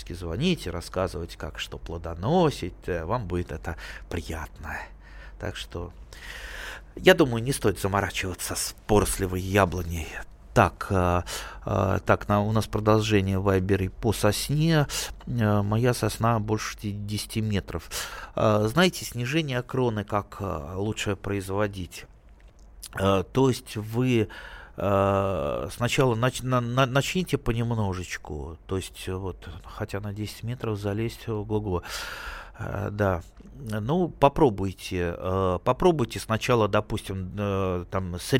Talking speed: 95 wpm